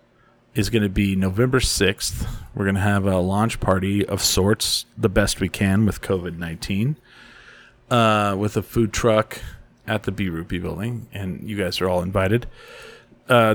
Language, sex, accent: English, male, American